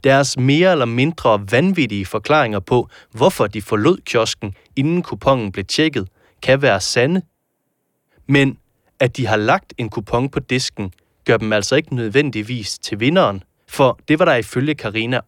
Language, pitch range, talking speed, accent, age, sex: Danish, 105-145 Hz, 155 wpm, native, 30-49, male